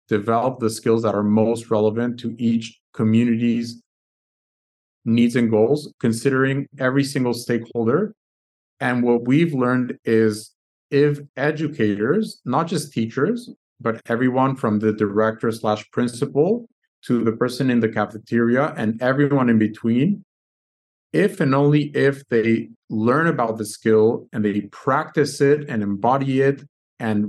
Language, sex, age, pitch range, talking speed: English, male, 30-49, 110-135 Hz, 135 wpm